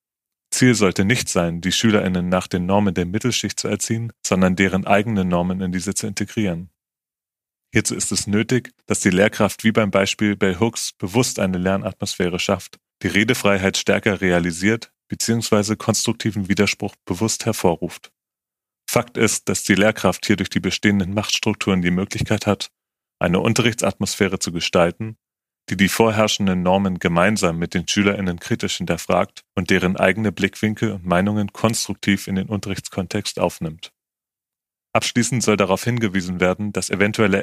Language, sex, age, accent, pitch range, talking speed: German, male, 30-49, German, 95-110 Hz, 145 wpm